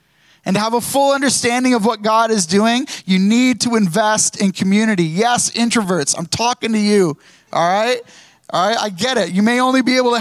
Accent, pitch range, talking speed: American, 190-255 Hz, 210 wpm